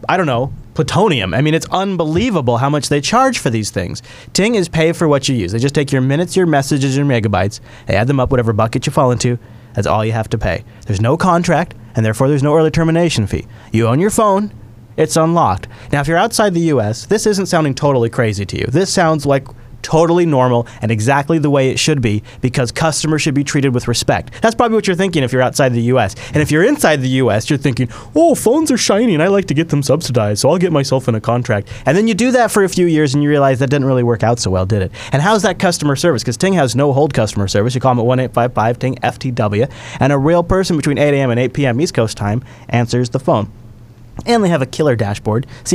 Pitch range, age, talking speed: 115-160 Hz, 30-49, 250 wpm